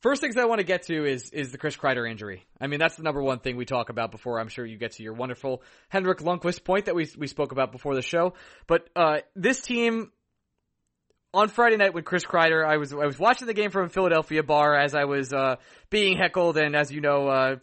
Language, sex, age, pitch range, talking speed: English, male, 20-39, 130-180 Hz, 255 wpm